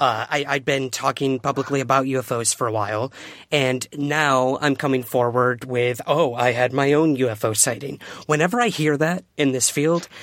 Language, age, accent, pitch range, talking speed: English, 30-49, American, 125-150 Hz, 180 wpm